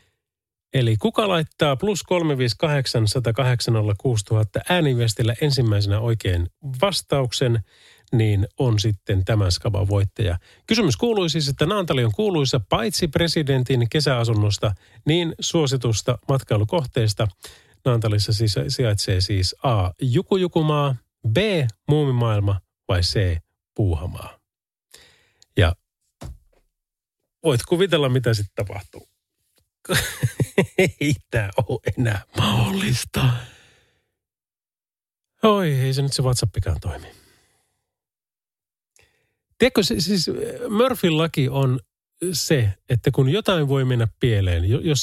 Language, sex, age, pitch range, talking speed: Finnish, male, 30-49, 105-155 Hz, 90 wpm